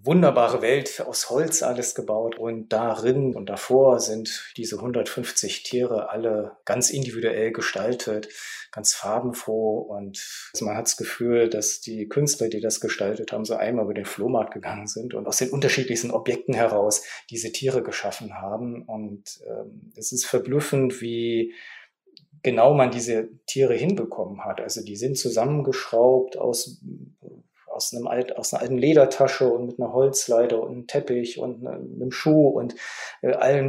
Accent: German